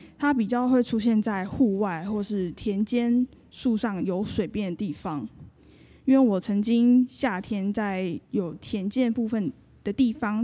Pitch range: 200-250 Hz